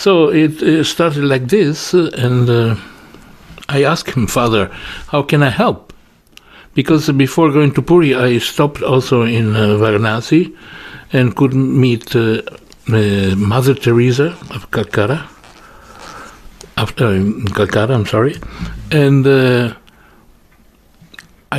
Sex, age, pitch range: male, 60-79, 115-145 Hz